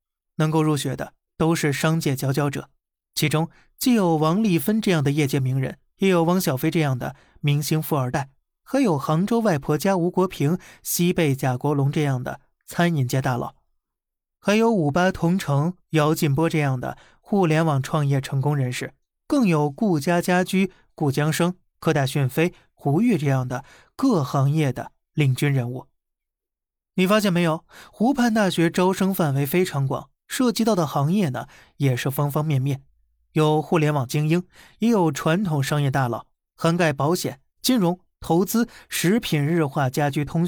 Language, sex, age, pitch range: Chinese, male, 20-39, 140-175 Hz